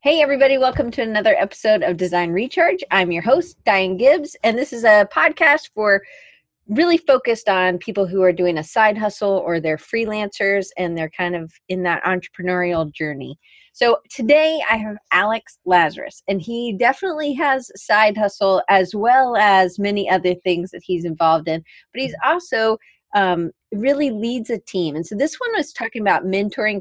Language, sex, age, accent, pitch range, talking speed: English, female, 30-49, American, 180-235 Hz, 175 wpm